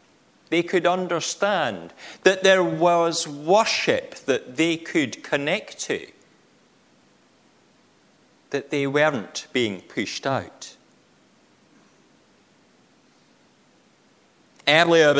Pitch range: 150-240 Hz